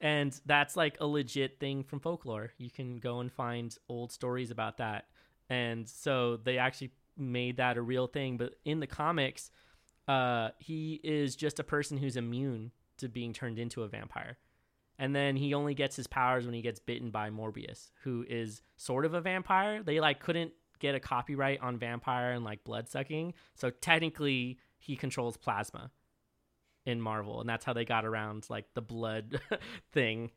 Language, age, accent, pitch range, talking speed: English, 20-39, American, 115-145 Hz, 180 wpm